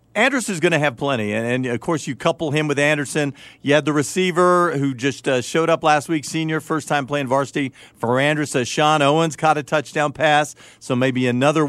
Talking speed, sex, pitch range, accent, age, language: 205 wpm, male, 120-155 Hz, American, 50-69, English